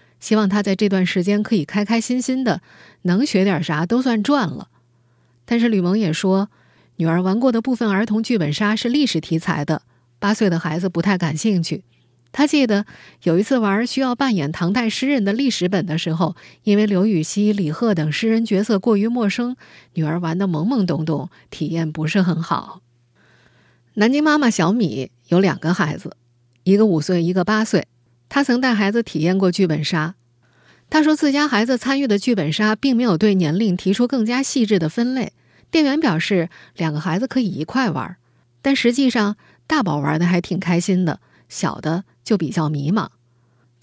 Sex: female